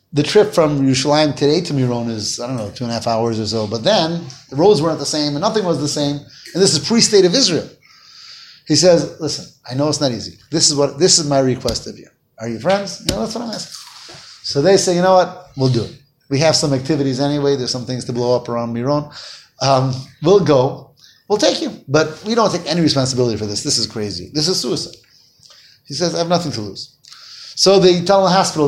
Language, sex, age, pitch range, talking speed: English, male, 30-49, 130-170 Hz, 245 wpm